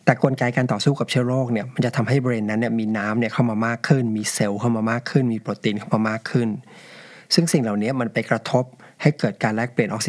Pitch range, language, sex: 110-135 Hz, Thai, male